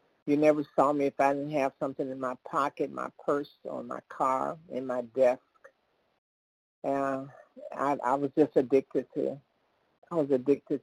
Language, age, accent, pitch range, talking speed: English, 60-79, American, 135-155 Hz, 170 wpm